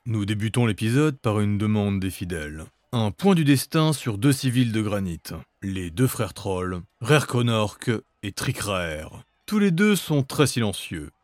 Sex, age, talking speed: male, 30-49, 160 wpm